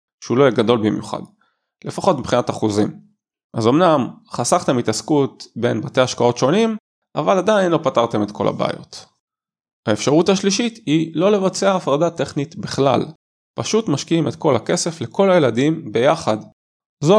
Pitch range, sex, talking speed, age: 115-160 Hz, male, 140 wpm, 20-39